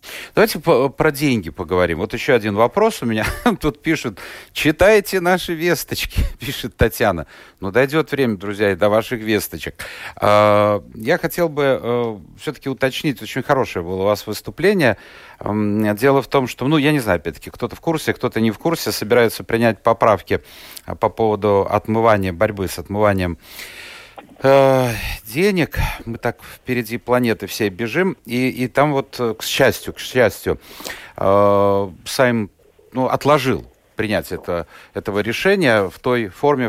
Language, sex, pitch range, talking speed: Russian, male, 105-140 Hz, 140 wpm